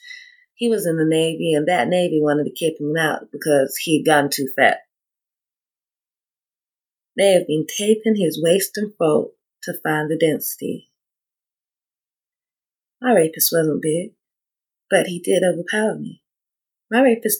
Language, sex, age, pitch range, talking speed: English, female, 30-49, 170-230 Hz, 140 wpm